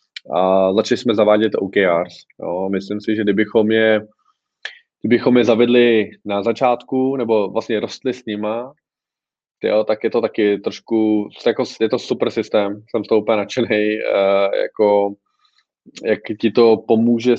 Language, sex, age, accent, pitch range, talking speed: Czech, male, 20-39, native, 110-125 Hz, 140 wpm